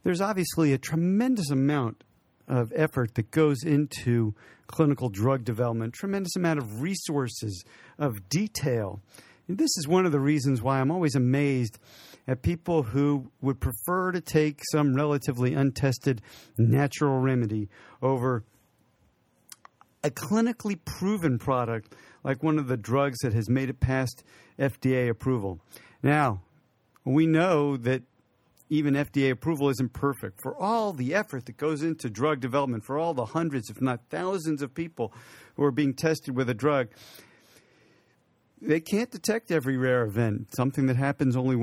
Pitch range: 125-155 Hz